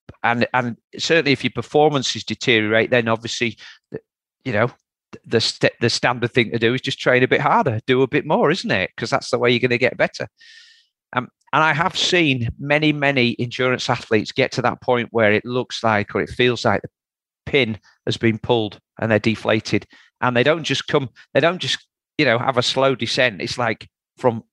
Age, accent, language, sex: 40-59, British, English, male